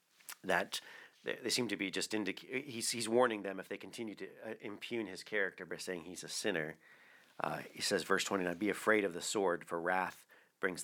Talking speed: 205 wpm